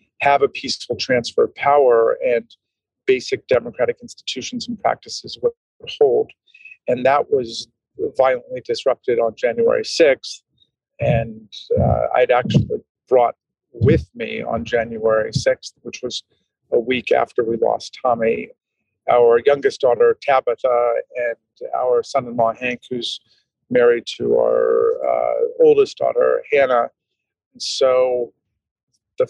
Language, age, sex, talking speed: English, 50-69, male, 125 wpm